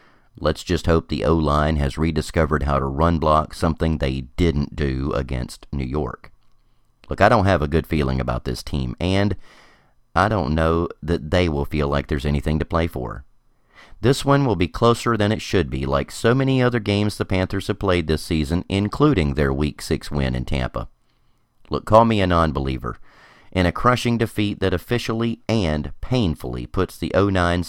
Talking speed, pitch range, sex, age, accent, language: 185 wpm, 75-105 Hz, male, 40-59, American, English